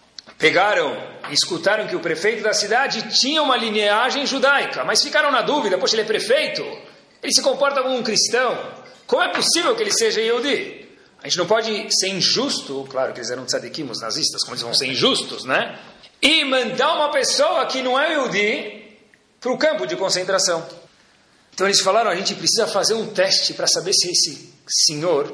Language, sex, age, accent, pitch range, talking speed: Portuguese, male, 40-59, Brazilian, 175-270 Hz, 185 wpm